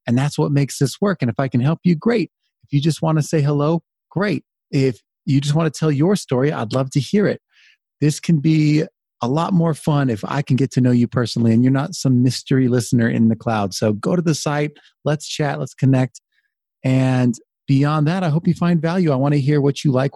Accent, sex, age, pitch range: American, male, 30-49, 120-145 Hz